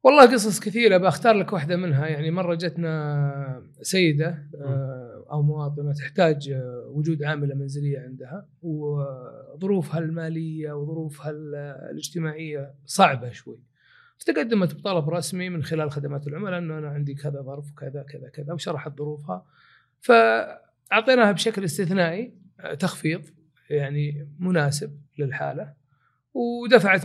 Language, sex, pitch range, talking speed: Arabic, male, 140-180 Hz, 110 wpm